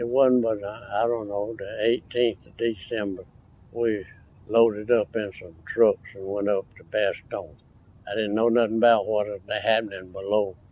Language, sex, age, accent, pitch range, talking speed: English, male, 60-79, American, 100-120 Hz, 170 wpm